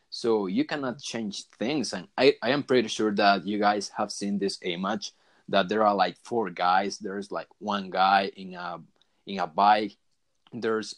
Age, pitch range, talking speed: 30-49, 100-110 Hz, 185 wpm